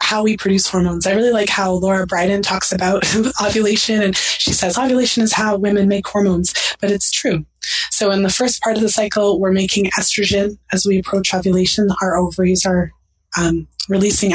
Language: English